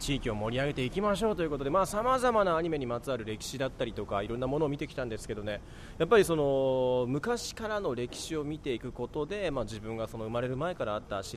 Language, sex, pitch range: Japanese, male, 110-175 Hz